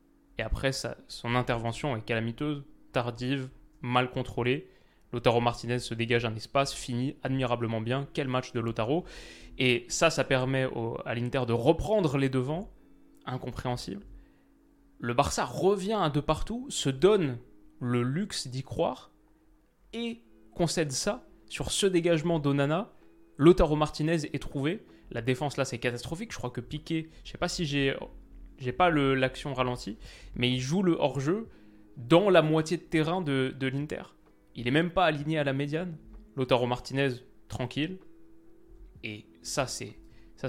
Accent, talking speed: French, 155 wpm